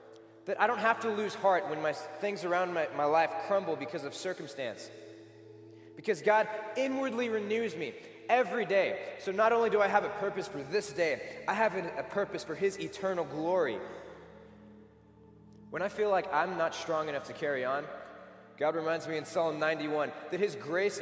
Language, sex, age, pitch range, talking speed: English, male, 20-39, 135-195 Hz, 185 wpm